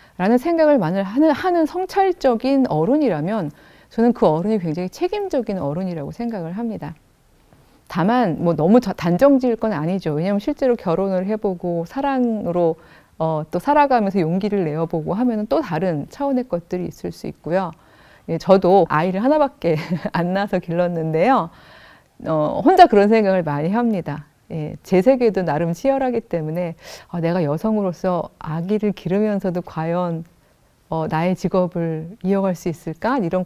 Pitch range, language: 165-245 Hz, Korean